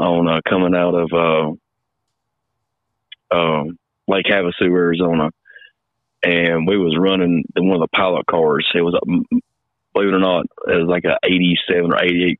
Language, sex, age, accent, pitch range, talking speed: English, male, 30-49, American, 85-95 Hz, 160 wpm